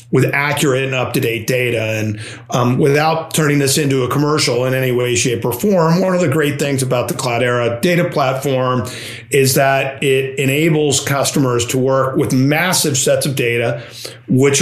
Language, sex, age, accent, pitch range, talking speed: English, male, 40-59, American, 125-145 Hz, 170 wpm